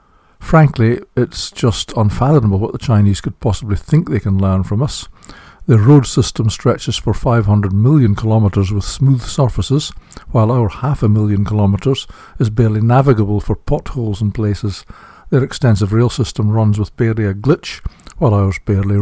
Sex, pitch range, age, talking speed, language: male, 100-120 Hz, 60-79, 160 wpm, English